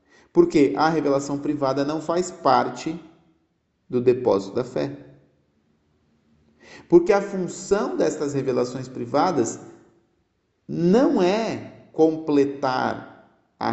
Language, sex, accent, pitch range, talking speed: Portuguese, male, Brazilian, 120-160 Hz, 90 wpm